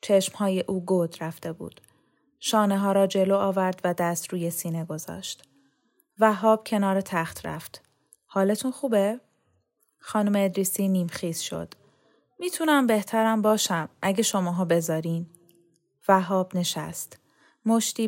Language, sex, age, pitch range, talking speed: Persian, female, 10-29, 175-215 Hz, 115 wpm